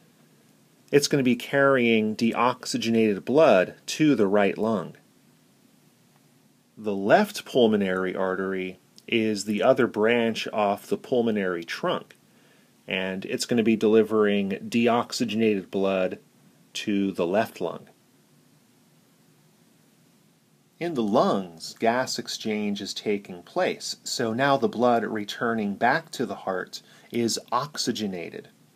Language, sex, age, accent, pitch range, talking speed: English, male, 30-49, American, 100-120 Hz, 115 wpm